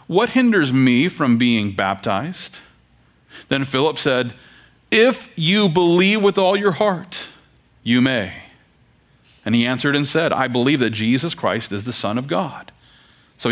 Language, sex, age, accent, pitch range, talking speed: English, male, 40-59, American, 110-155 Hz, 150 wpm